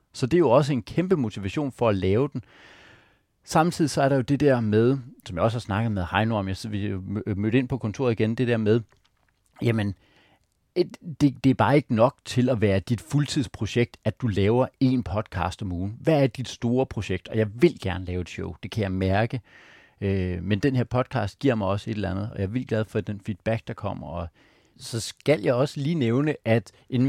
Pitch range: 100-130 Hz